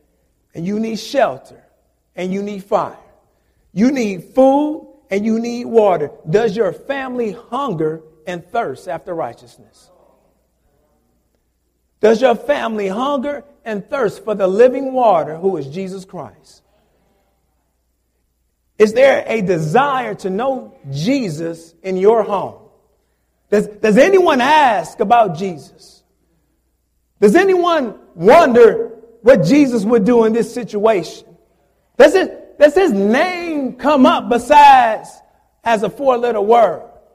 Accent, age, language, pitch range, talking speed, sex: American, 50-69, English, 195-275 Hz, 120 wpm, male